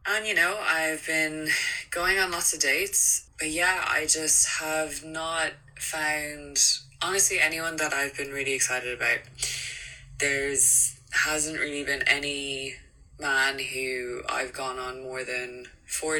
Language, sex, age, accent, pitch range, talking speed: English, female, 20-39, Irish, 135-170 Hz, 140 wpm